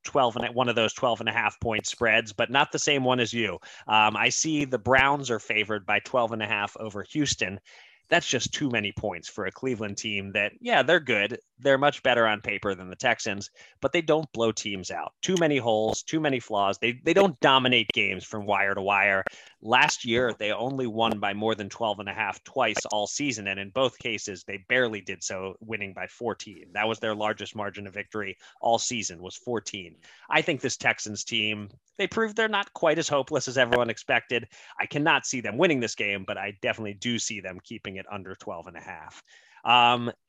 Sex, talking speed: male, 220 wpm